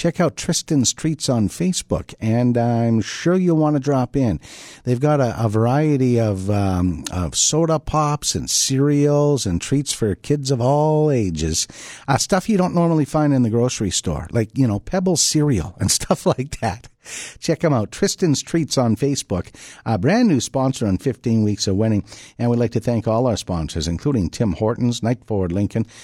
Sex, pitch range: male, 110-155 Hz